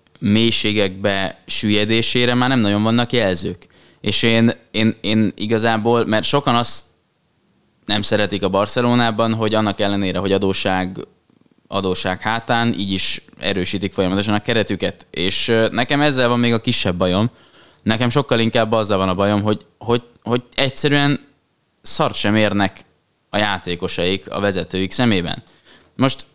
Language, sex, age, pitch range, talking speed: Hungarian, male, 20-39, 100-120 Hz, 135 wpm